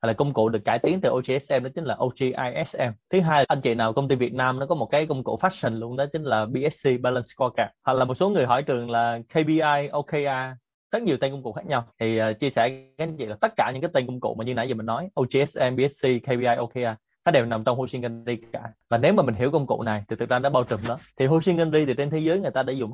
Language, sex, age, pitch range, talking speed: Vietnamese, male, 20-39, 120-150 Hz, 295 wpm